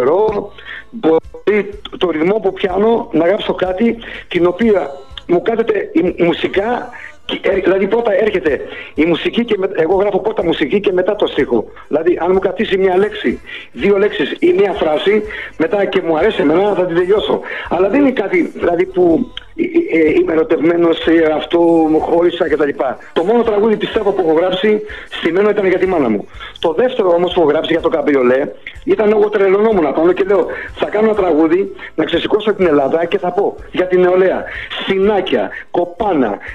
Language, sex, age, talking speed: Greek, male, 50-69, 170 wpm